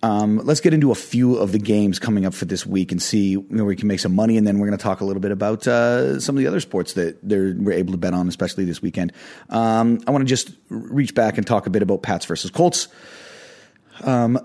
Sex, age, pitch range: male, 30-49, 100-125 Hz